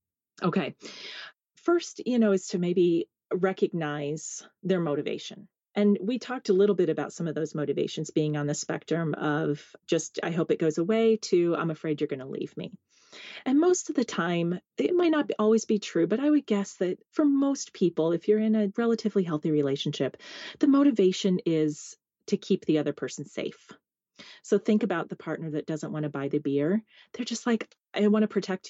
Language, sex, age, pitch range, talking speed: English, female, 30-49, 155-215 Hz, 195 wpm